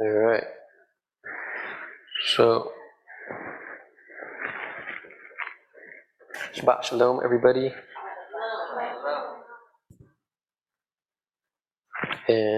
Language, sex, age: English, male, 20-39